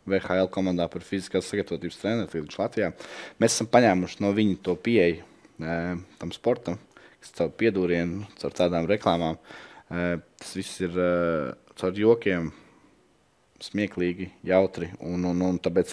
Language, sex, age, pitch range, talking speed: English, male, 20-39, 85-95 Hz, 130 wpm